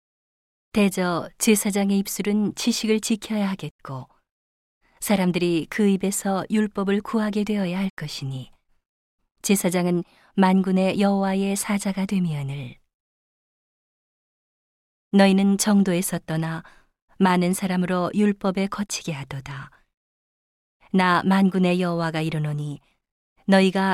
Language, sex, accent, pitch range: Korean, female, native, 165-205 Hz